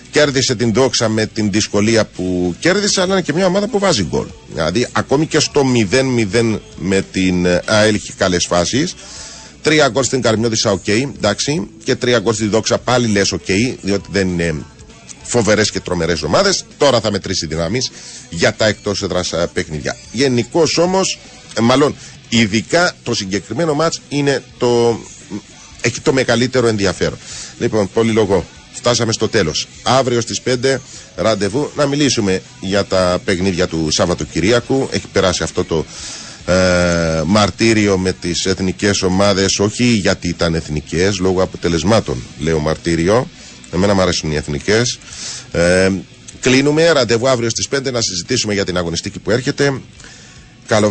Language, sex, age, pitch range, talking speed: Greek, male, 40-59, 90-120 Hz, 145 wpm